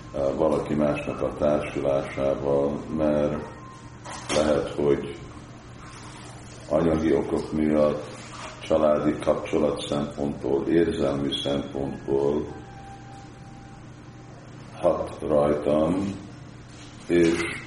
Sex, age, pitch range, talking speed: male, 50-69, 65-75 Hz, 60 wpm